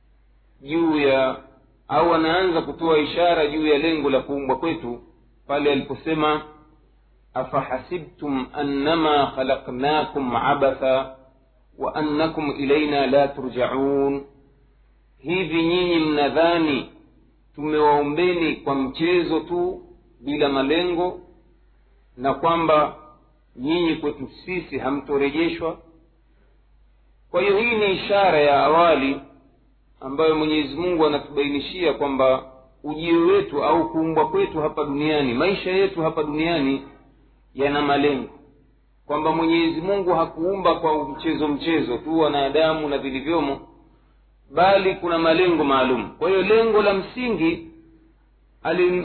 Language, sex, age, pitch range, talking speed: Swahili, male, 50-69, 140-165 Hz, 105 wpm